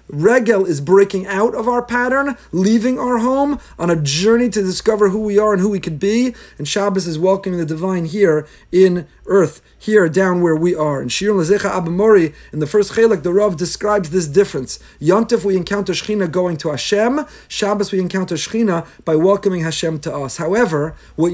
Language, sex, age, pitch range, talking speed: English, male, 30-49, 170-210 Hz, 190 wpm